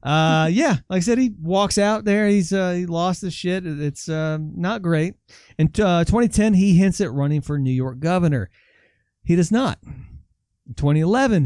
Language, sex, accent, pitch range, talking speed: English, male, American, 140-190 Hz, 190 wpm